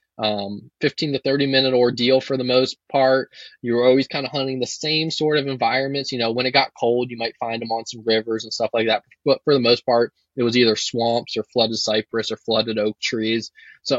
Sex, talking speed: male, 230 wpm